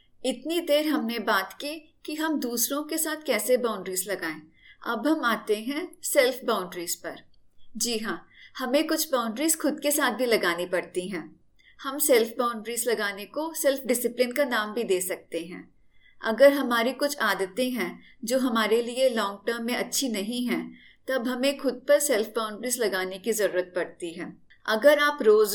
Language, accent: Hindi, native